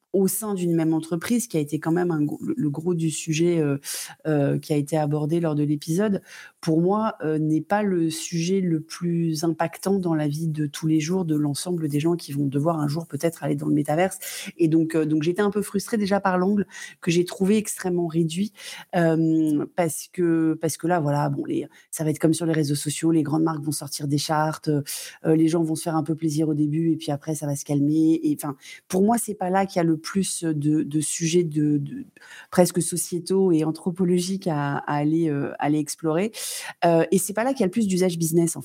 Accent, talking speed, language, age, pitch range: French, 240 wpm, French, 30-49, 155-180 Hz